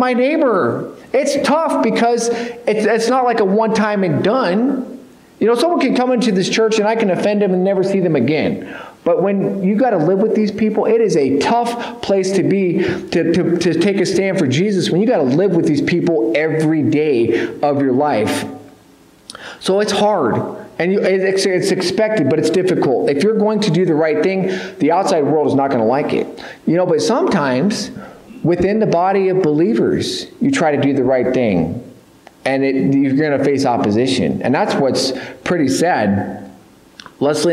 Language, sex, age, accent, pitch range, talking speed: English, male, 40-59, American, 145-210 Hz, 195 wpm